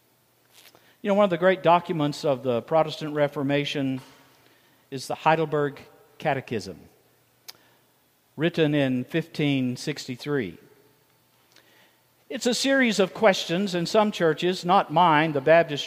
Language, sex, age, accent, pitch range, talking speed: English, male, 50-69, American, 140-210 Hz, 115 wpm